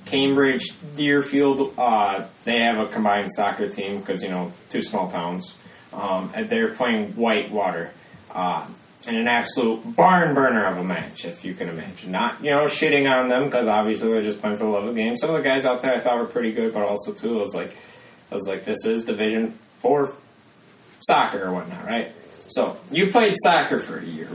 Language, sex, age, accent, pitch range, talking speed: English, male, 20-39, American, 115-140 Hz, 210 wpm